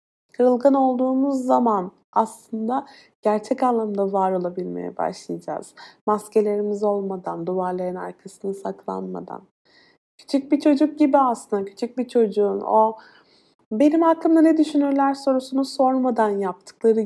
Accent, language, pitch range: native, Turkish, 200-250 Hz